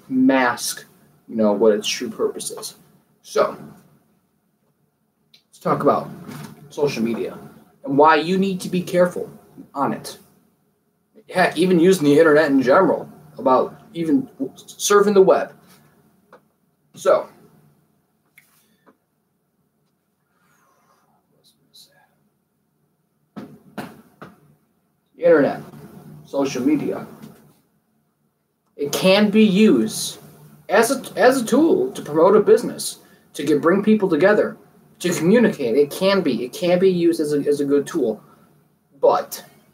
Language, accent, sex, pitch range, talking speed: English, American, male, 140-205 Hz, 110 wpm